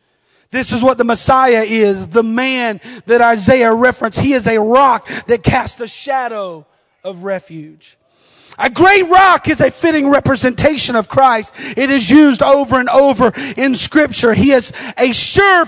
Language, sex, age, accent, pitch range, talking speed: English, male, 40-59, American, 235-310 Hz, 160 wpm